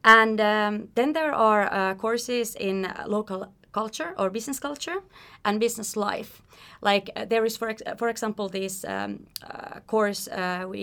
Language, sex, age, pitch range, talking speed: Swedish, female, 30-49, 185-220 Hz, 165 wpm